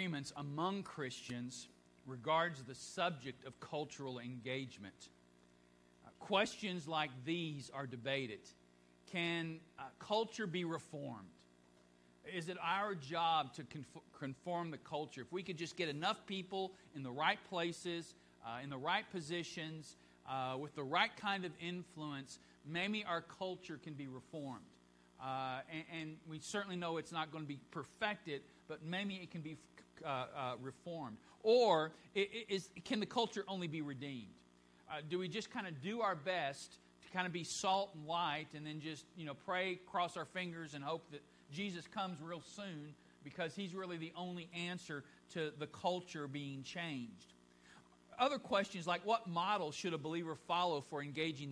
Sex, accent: male, American